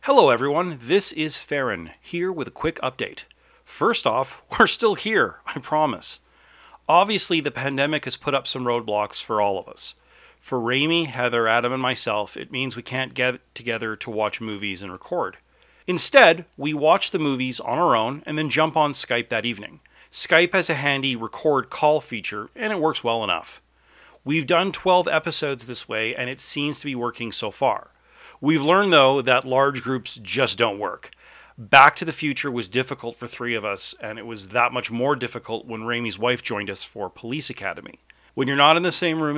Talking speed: 195 wpm